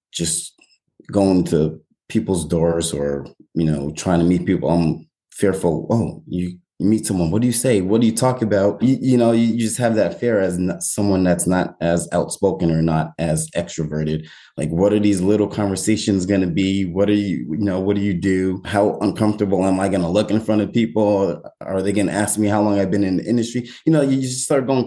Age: 20-39